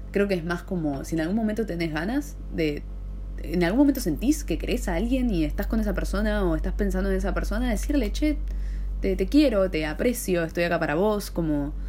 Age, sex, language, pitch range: 20-39, female, Spanish, 150-185 Hz